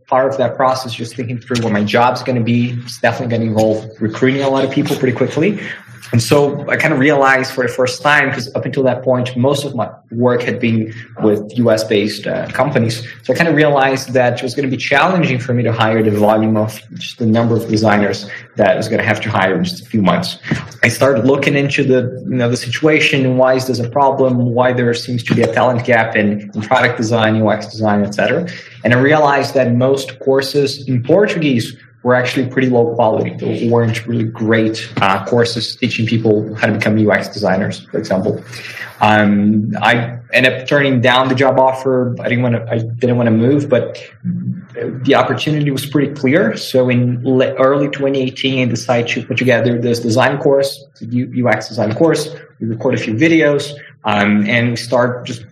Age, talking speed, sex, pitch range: 20-39, 210 wpm, male, 115-130 Hz